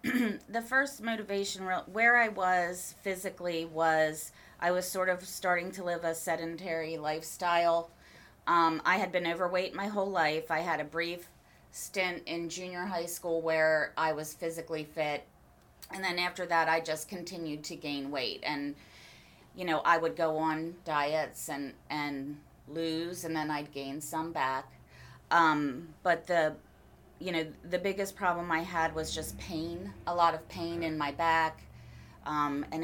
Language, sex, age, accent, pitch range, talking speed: English, female, 30-49, American, 150-170 Hz, 165 wpm